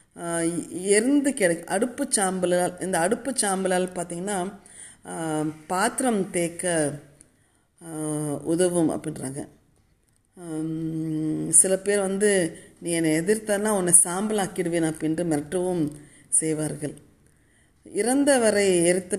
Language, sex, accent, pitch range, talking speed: Tamil, female, native, 155-185 Hz, 80 wpm